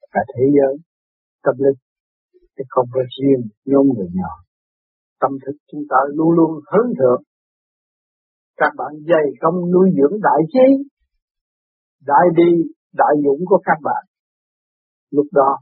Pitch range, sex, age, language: 130-175 Hz, male, 60-79, Vietnamese